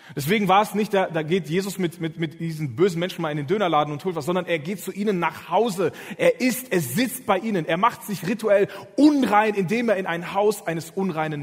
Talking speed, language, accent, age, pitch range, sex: 240 wpm, German, German, 30-49, 140-190 Hz, male